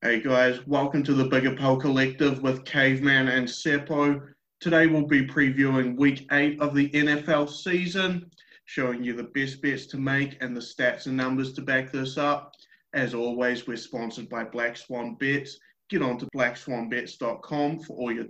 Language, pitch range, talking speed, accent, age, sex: English, 130-155 Hz, 170 wpm, Australian, 30-49, male